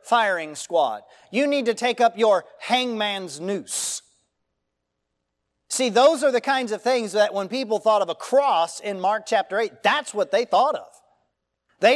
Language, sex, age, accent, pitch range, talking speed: English, male, 40-59, American, 175-255 Hz, 170 wpm